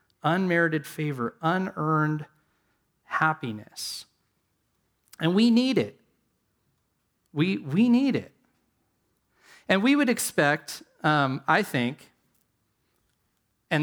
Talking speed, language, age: 85 wpm, English, 30-49